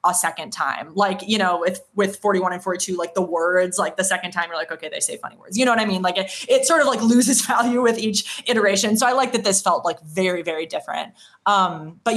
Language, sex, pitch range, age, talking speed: English, female, 180-220 Hz, 20-39, 260 wpm